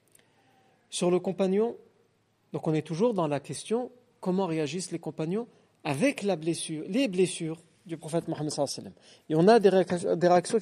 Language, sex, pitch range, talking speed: French, male, 160-210 Hz, 170 wpm